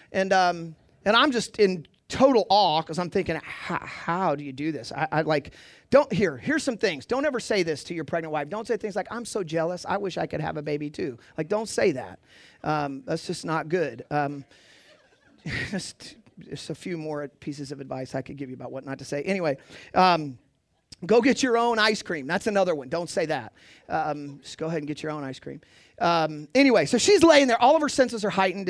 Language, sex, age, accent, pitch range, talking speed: English, male, 40-59, American, 150-250 Hz, 230 wpm